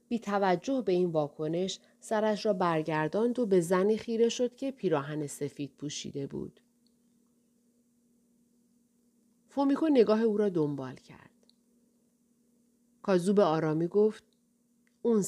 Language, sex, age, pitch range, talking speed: Persian, female, 40-59, 190-235 Hz, 115 wpm